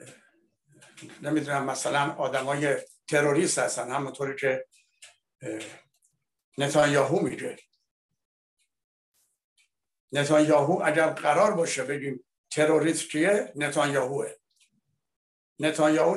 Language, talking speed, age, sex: Persian, 65 wpm, 60-79, male